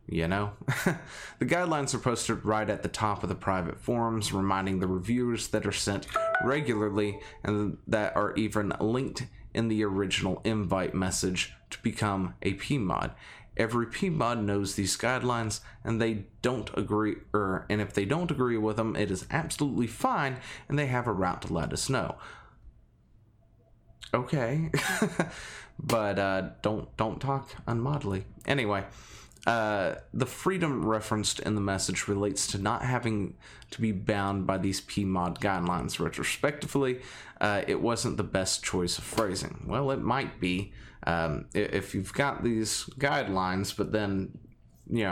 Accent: American